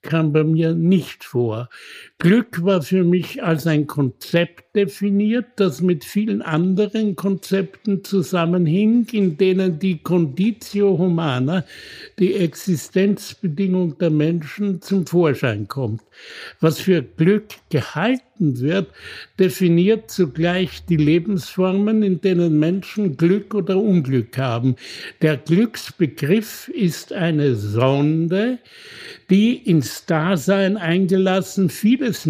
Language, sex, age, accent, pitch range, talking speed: German, male, 70-89, German, 150-195 Hz, 105 wpm